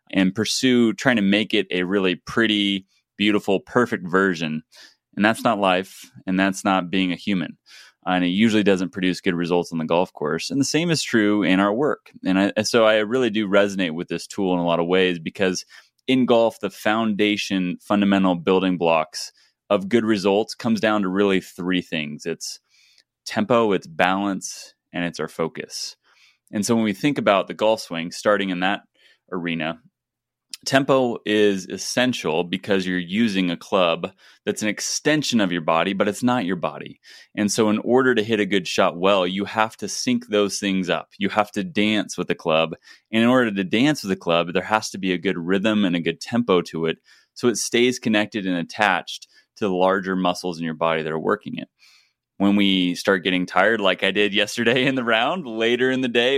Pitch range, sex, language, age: 90-110 Hz, male, English, 20-39